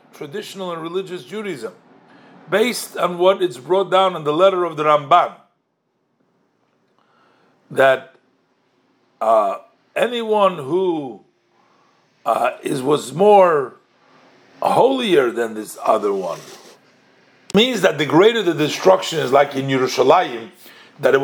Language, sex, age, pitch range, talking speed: English, male, 50-69, 170-220 Hz, 115 wpm